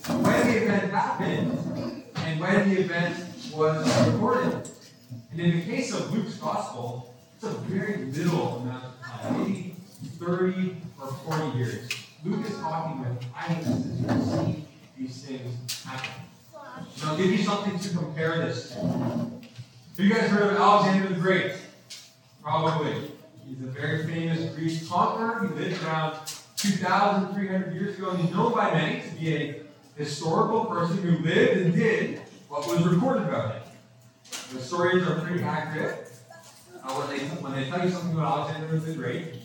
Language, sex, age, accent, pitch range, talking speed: English, male, 20-39, American, 130-180 Hz, 160 wpm